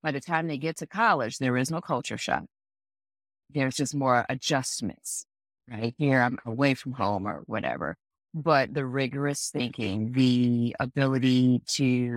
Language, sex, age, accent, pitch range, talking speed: English, female, 40-59, American, 130-165 Hz, 155 wpm